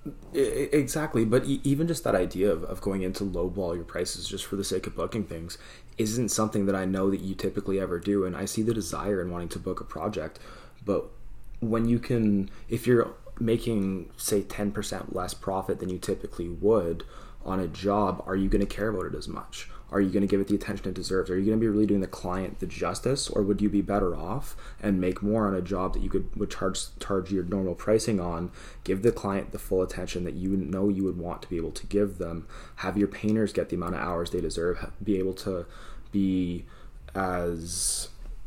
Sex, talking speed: male, 225 wpm